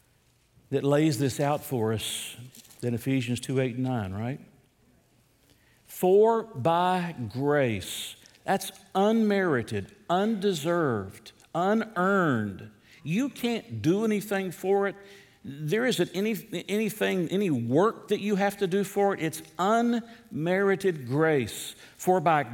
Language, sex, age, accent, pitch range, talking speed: English, male, 60-79, American, 120-165 Hz, 115 wpm